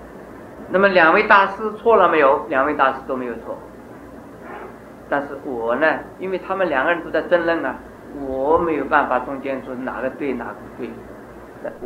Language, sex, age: Chinese, male, 50-69